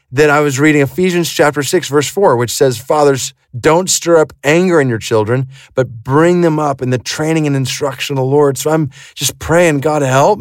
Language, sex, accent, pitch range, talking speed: English, male, American, 125-165 Hz, 215 wpm